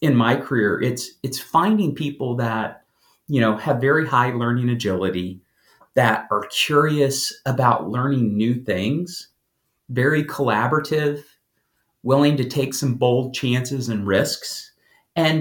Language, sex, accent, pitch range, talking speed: English, male, American, 115-145 Hz, 130 wpm